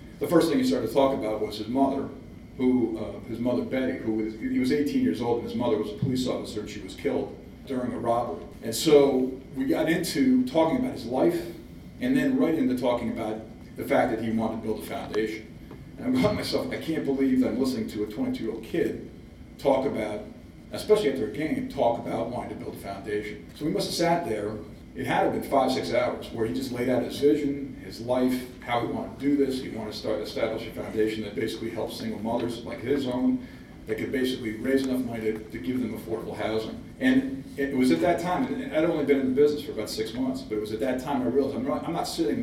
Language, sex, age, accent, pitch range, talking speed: English, male, 40-59, American, 110-175 Hz, 245 wpm